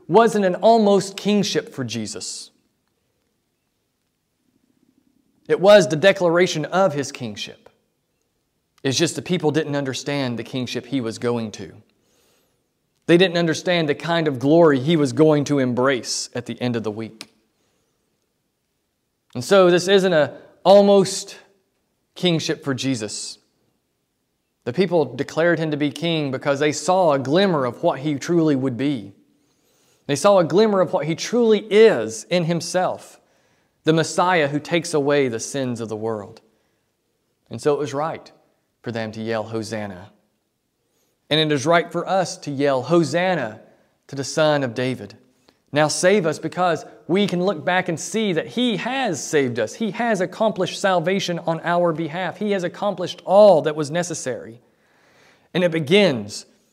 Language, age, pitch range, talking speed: English, 40-59, 135-185 Hz, 155 wpm